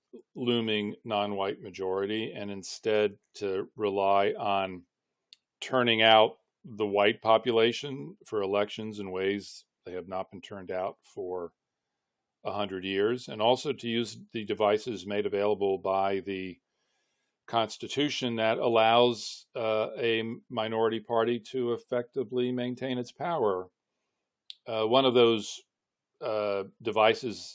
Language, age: English, 40-59